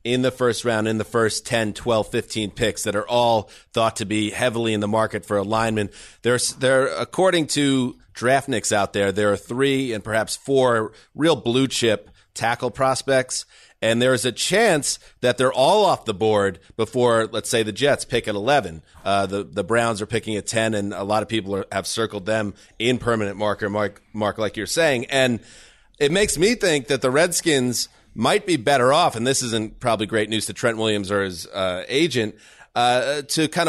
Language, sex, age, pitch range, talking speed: English, male, 30-49, 110-130 Hz, 200 wpm